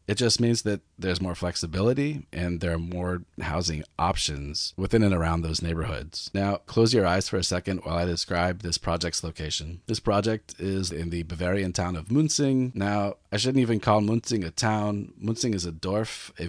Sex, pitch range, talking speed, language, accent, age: male, 85-110 Hz, 195 wpm, English, American, 30-49